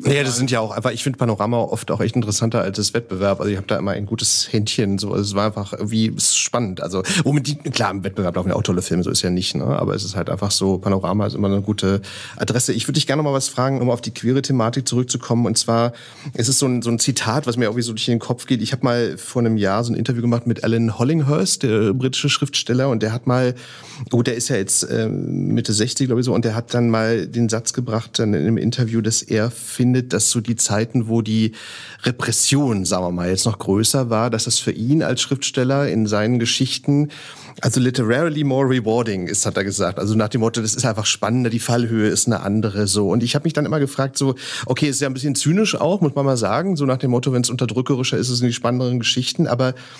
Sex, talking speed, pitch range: male, 260 wpm, 110-130 Hz